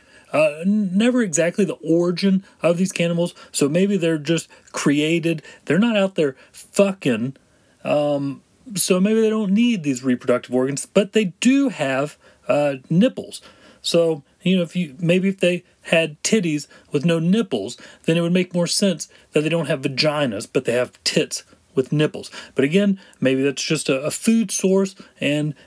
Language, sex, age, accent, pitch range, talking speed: English, male, 30-49, American, 155-205 Hz, 170 wpm